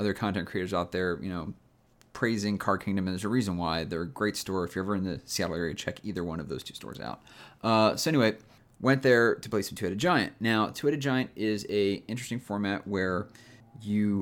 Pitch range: 95-115 Hz